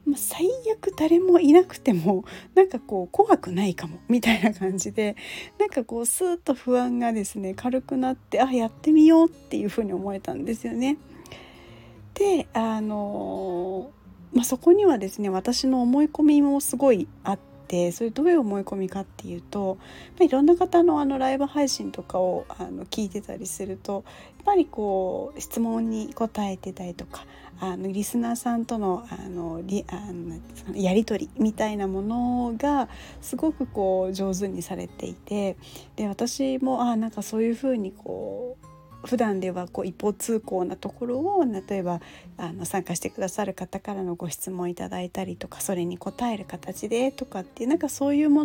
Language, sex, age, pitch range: Japanese, female, 40-59, 190-270 Hz